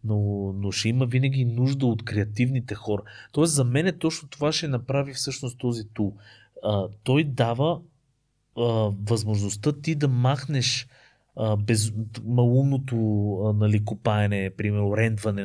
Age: 30-49